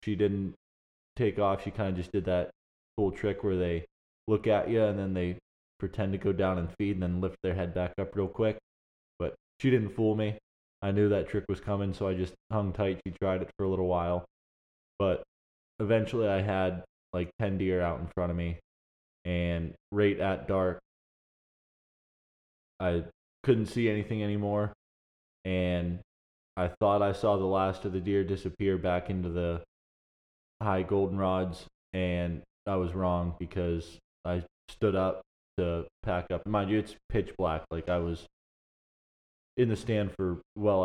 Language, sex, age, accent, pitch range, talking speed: English, male, 20-39, American, 85-100 Hz, 175 wpm